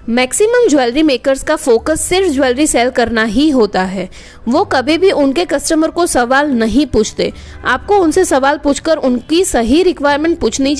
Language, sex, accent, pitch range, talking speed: Hindi, female, native, 250-325 Hz, 160 wpm